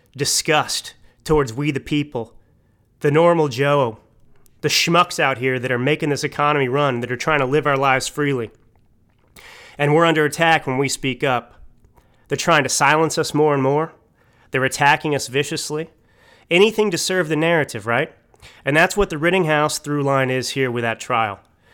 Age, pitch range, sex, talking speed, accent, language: 30-49, 125-155 Hz, male, 175 wpm, American, English